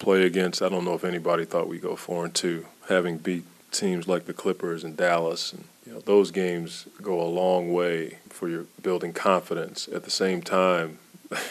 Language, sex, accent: English, male, American